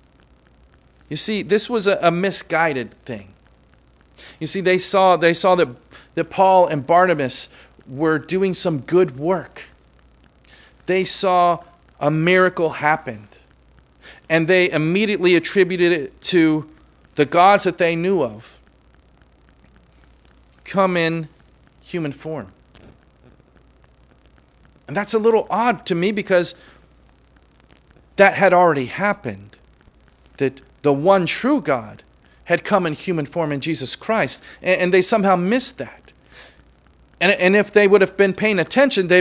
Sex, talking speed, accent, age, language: male, 130 wpm, American, 40-59, English